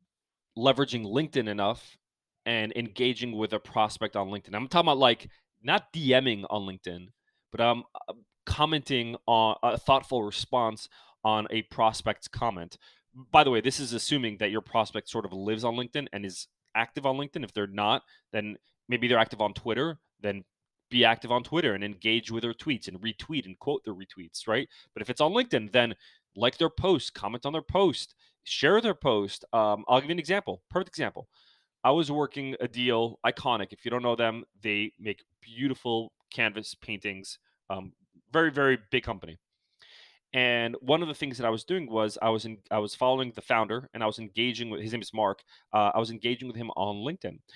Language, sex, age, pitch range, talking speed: English, male, 20-39, 105-130 Hz, 195 wpm